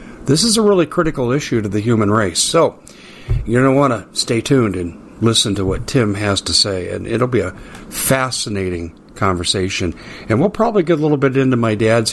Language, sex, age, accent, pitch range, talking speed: English, male, 50-69, American, 100-125 Hz, 210 wpm